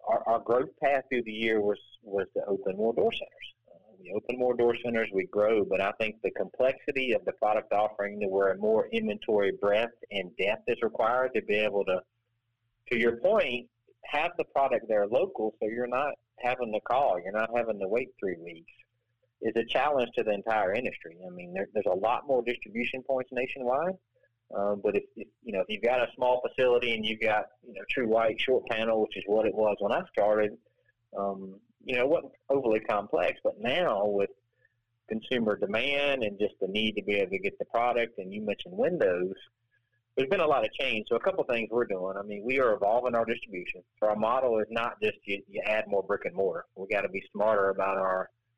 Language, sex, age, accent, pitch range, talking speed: English, male, 40-59, American, 105-120 Hz, 220 wpm